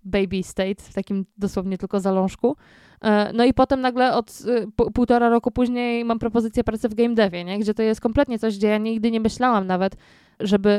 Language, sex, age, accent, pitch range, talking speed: Polish, female, 20-39, native, 200-225 Hz, 185 wpm